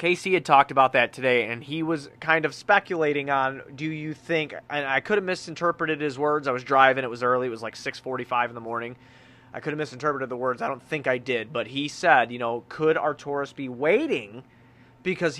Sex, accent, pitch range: male, American, 125-160 Hz